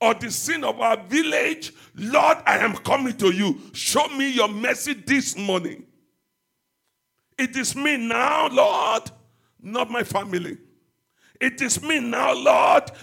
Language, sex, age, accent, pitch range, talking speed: English, male, 50-69, Nigerian, 220-300 Hz, 145 wpm